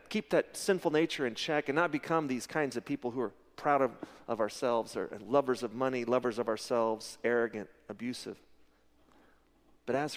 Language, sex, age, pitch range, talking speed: English, male, 40-59, 125-170 Hz, 175 wpm